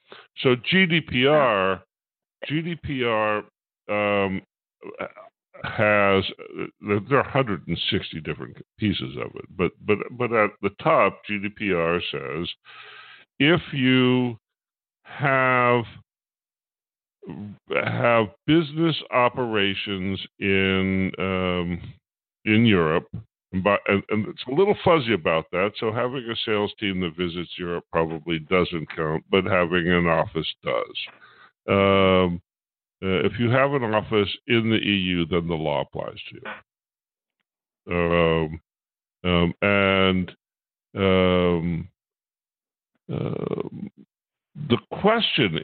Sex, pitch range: female, 90-120 Hz